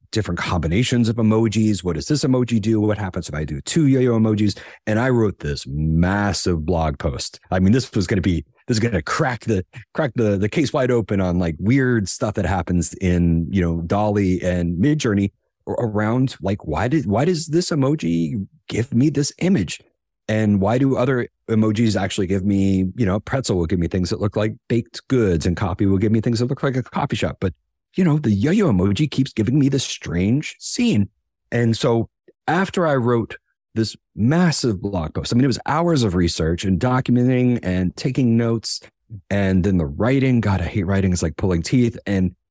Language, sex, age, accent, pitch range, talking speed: English, male, 30-49, American, 90-125 Hz, 210 wpm